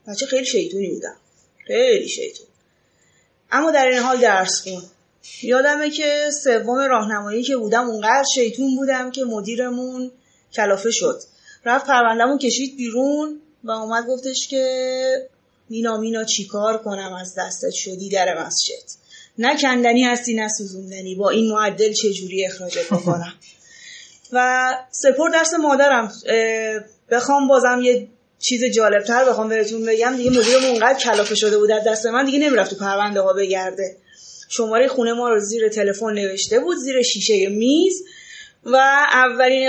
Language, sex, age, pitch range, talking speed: Persian, female, 30-49, 220-285 Hz, 140 wpm